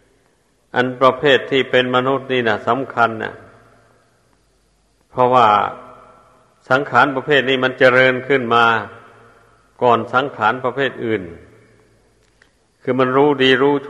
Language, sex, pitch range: Thai, male, 115-130 Hz